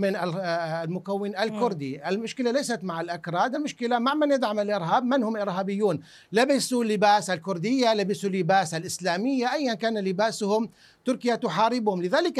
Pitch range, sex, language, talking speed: 200-245 Hz, male, Arabic, 130 wpm